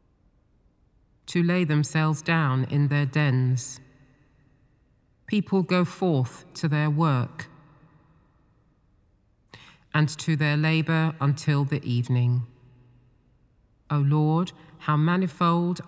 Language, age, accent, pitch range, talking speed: English, 40-59, British, 130-160 Hz, 90 wpm